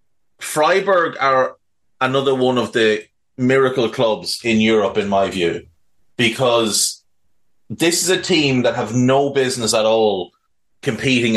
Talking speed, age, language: 130 wpm, 30-49, English